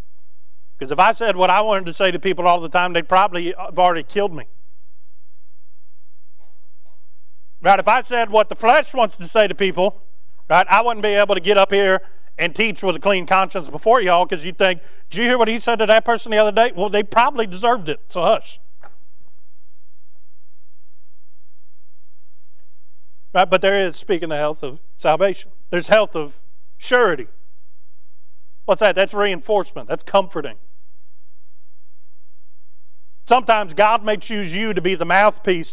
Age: 40-59